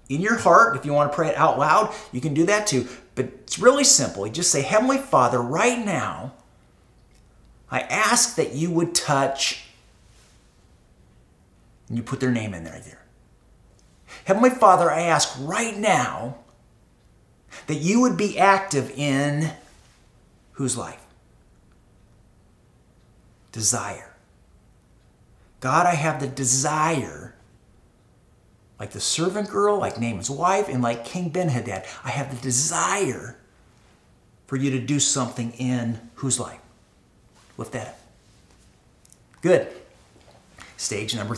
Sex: male